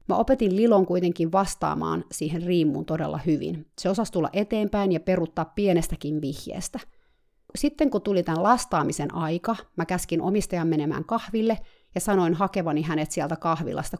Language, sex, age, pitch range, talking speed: Finnish, female, 30-49, 160-200 Hz, 145 wpm